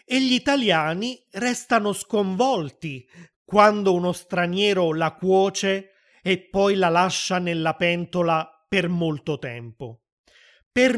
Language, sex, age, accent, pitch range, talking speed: Italian, male, 30-49, native, 160-220 Hz, 110 wpm